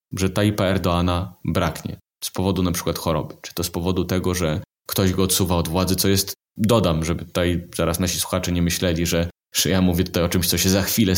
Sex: male